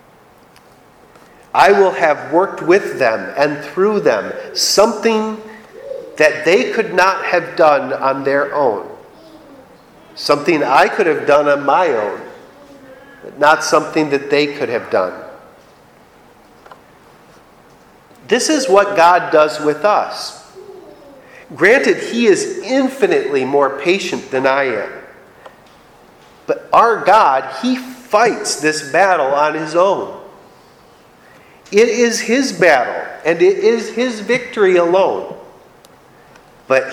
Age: 50-69